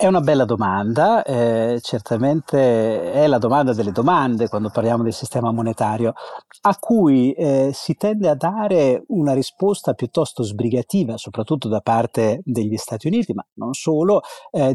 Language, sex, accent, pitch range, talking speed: Italian, male, native, 110-155 Hz, 150 wpm